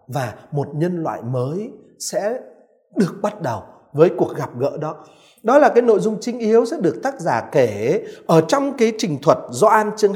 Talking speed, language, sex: 195 wpm, Vietnamese, male